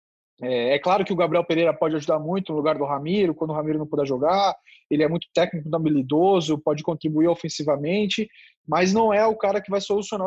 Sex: male